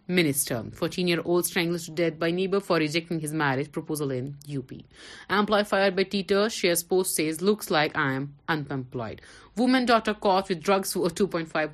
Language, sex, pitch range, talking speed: Urdu, female, 150-190 Hz, 180 wpm